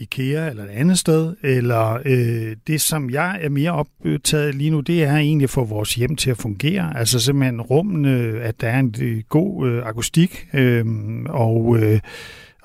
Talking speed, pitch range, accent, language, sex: 185 wpm, 120-150 Hz, native, Danish, male